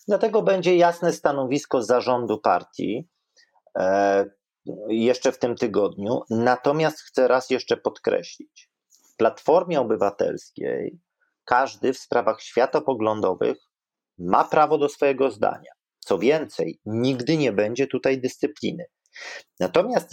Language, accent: Polish, native